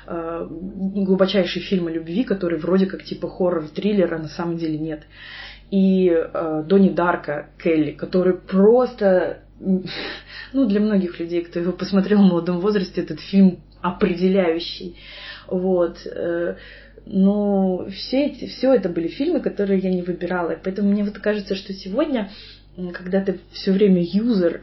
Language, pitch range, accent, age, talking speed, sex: Russian, 170-200 Hz, native, 20-39, 130 wpm, female